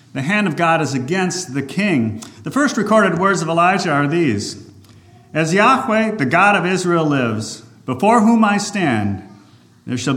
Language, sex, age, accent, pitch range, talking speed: English, male, 50-69, American, 110-160 Hz, 170 wpm